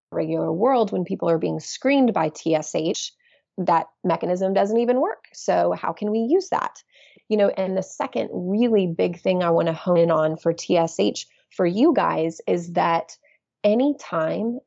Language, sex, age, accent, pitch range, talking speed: English, female, 30-49, American, 170-210 Hz, 170 wpm